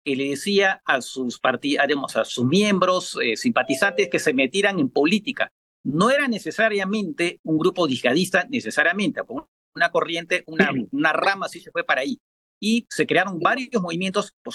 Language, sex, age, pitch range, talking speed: Spanish, male, 50-69, 155-205 Hz, 170 wpm